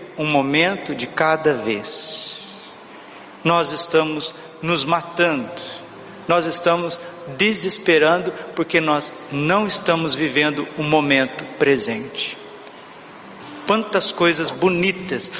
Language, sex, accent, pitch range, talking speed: Portuguese, male, Brazilian, 155-175 Hz, 90 wpm